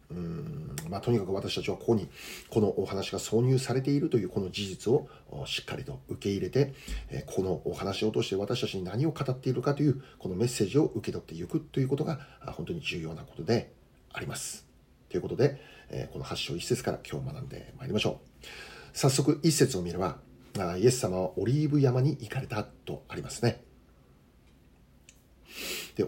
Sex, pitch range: male, 95-140 Hz